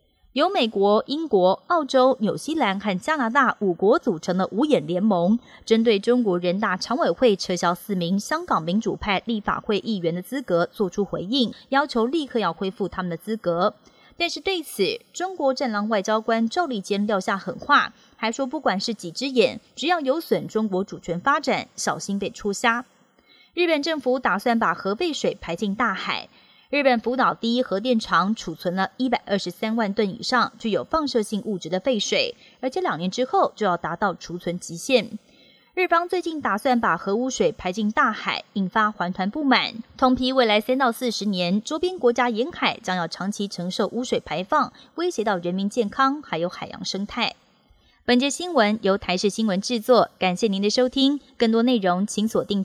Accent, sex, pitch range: native, female, 190-260 Hz